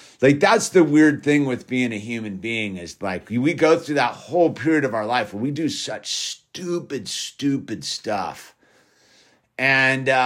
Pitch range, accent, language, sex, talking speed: 110-155 Hz, American, English, male, 170 wpm